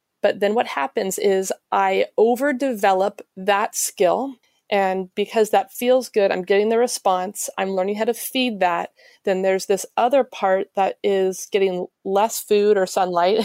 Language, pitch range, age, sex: English, 195-225 Hz, 30-49, female